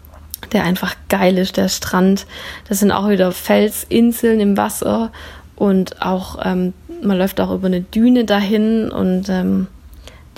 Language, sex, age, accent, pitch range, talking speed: German, female, 20-39, German, 180-210 Hz, 140 wpm